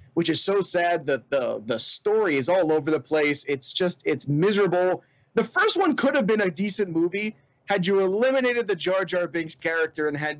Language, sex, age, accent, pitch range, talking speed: English, male, 30-49, American, 145-180 Hz, 210 wpm